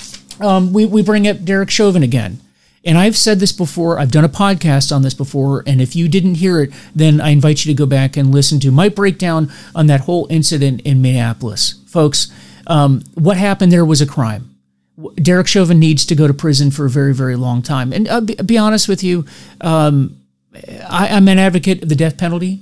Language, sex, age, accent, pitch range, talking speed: English, male, 40-59, American, 135-175 Hz, 220 wpm